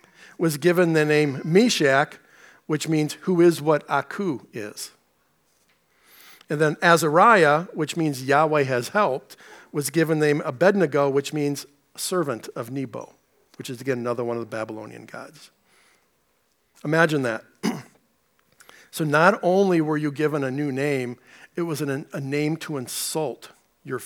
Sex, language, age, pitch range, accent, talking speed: male, English, 50-69, 135-170 Hz, American, 140 wpm